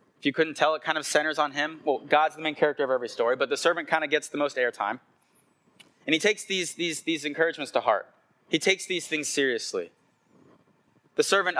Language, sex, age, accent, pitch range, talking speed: English, male, 20-39, American, 130-190 Hz, 225 wpm